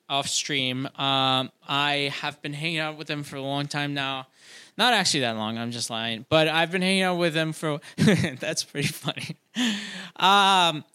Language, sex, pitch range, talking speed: English, male, 140-180 Hz, 185 wpm